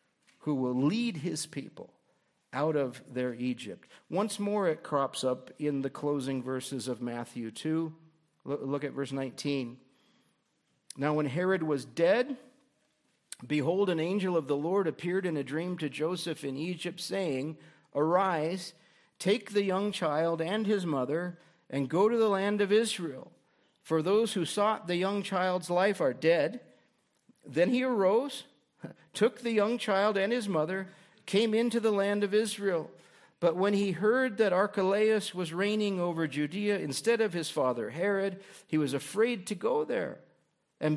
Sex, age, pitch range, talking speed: male, 50-69, 150-205 Hz, 160 wpm